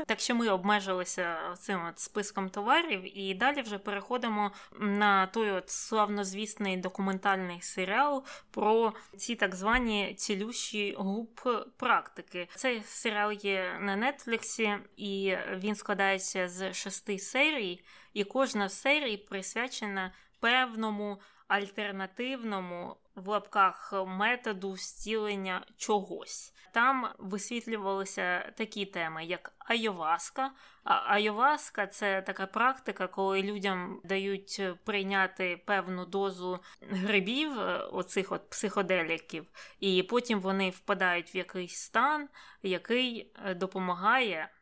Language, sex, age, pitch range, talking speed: Ukrainian, female, 20-39, 190-220 Hz, 100 wpm